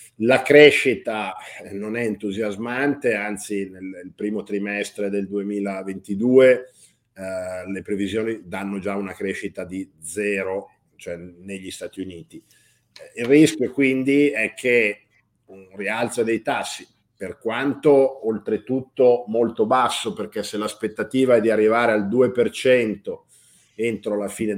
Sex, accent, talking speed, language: male, native, 115 wpm, Italian